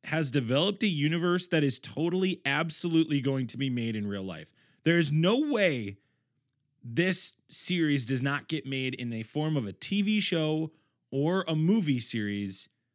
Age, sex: 30-49, male